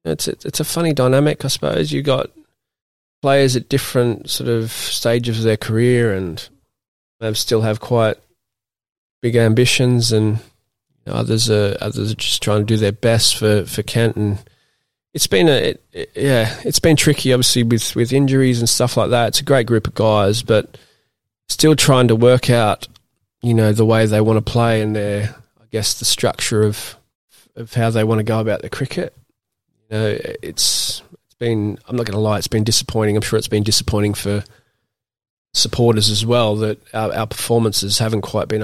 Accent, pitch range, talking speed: Australian, 105-120 Hz, 195 wpm